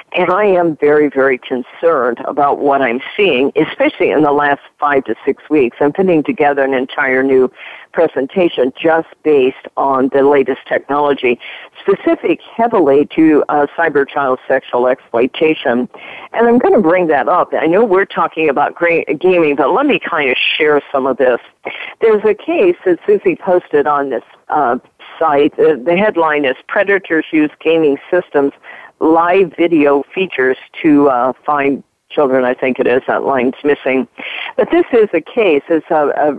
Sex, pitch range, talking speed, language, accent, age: female, 140-210 Hz, 165 wpm, English, American, 50-69